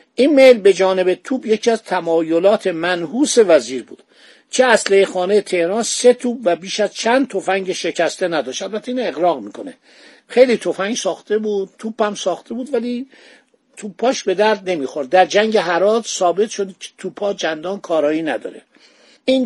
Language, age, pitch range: Persian, 50-69, 180-235 Hz